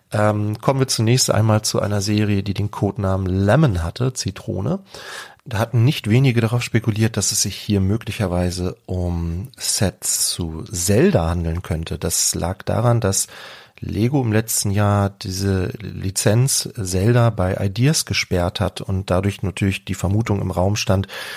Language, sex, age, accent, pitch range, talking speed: German, male, 40-59, German, 95-120 Hz, 150 wpm